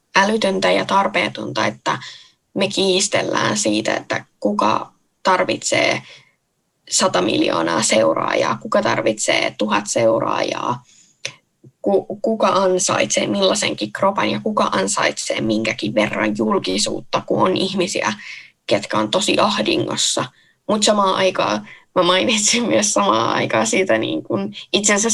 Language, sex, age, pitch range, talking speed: Finnish, female, 10-29, 180-220 Hz, 110 wpm